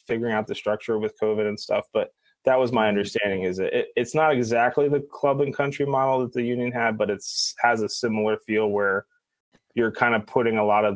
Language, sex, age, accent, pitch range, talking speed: English, male, 20-39, American, 100-120 Hz, 220 wpm